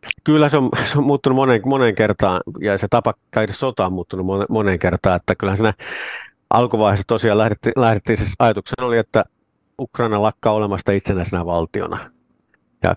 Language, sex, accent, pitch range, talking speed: Finnish, male, native, 95-110 Hz, 155 wpm